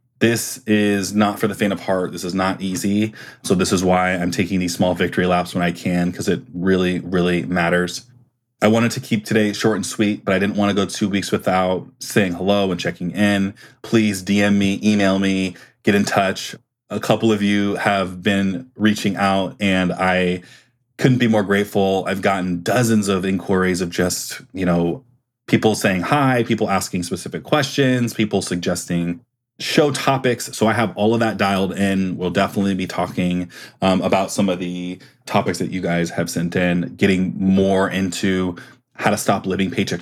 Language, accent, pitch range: English, American, 90-105 Hz